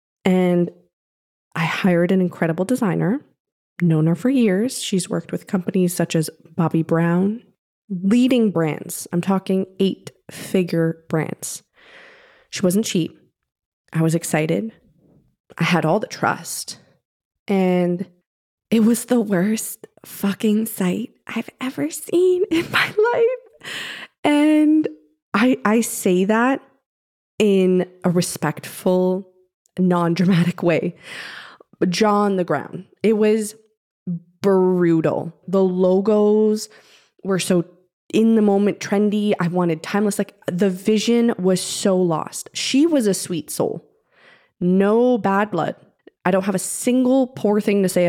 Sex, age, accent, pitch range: female, 20-39, American, 175-220 Hz